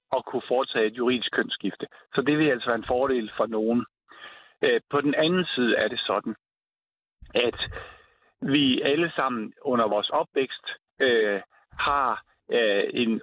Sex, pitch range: male, 125-165 Hz